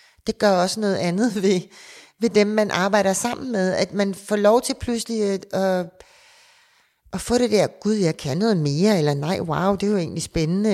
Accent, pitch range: native, 180-220 Hz